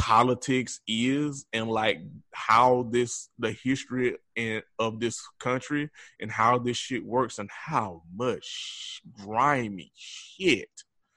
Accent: American